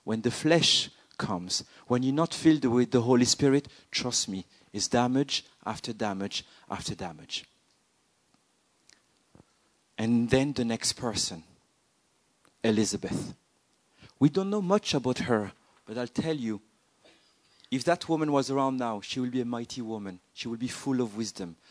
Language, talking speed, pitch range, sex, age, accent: English, 150 wpm, 105-130 Hz, male, 50-69, French